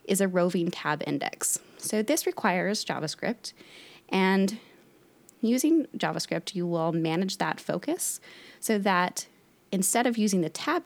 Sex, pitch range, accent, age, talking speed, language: female, 165-215 Hz, American, 20-39, 135 wpm, English